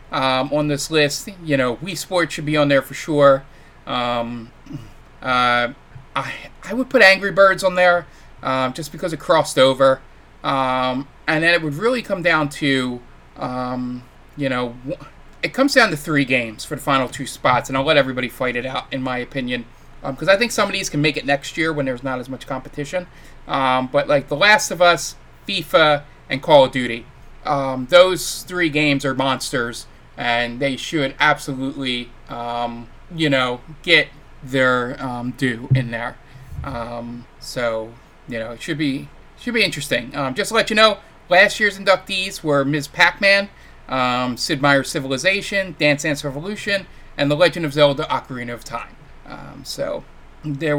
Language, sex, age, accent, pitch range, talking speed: English, male, 20-39, American, 130-160 Hz, 180 wpm